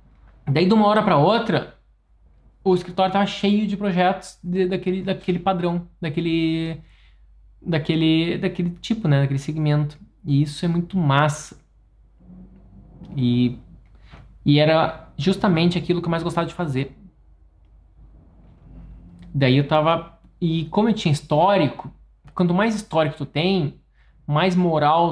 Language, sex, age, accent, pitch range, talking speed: Portuguese, male, 20-39, Brazilian, 140-180 Hz, 130 wpm